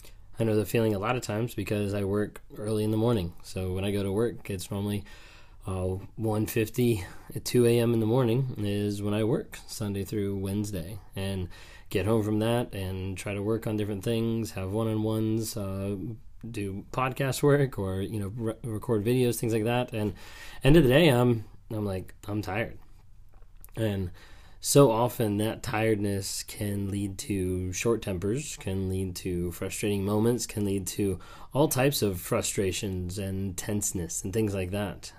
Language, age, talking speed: English, 20-39, 180 wpm